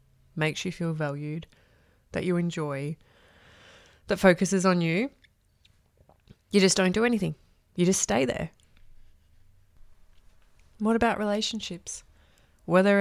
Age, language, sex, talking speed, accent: 20-39, English, female, 110 wpm, Australian